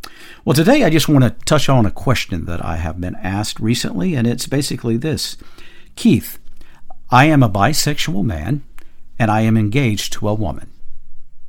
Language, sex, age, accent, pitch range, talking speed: English, male, 50-69, American, 95-140 Hz, 170 wpm